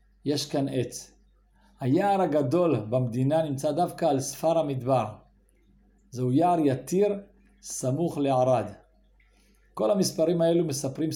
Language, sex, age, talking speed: Hebrew, male, 50-69, 110 wpm